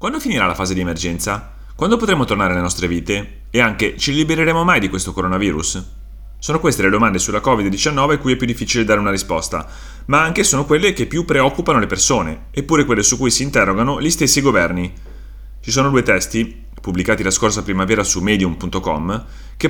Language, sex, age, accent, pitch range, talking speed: Italian, male, 30-49, native, 90-135 Hz, 190 wpm